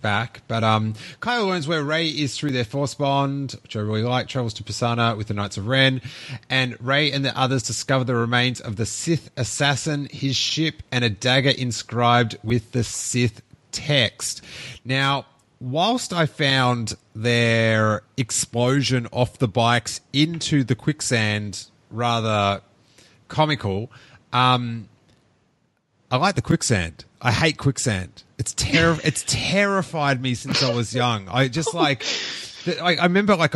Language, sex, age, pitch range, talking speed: English, male, 30-49, 120-150 Hz, 145 wpm